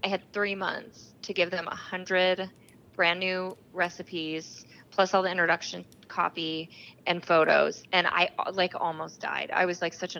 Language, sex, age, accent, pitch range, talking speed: English, female, 20-39, American, 170-195 Hz, 170 wpm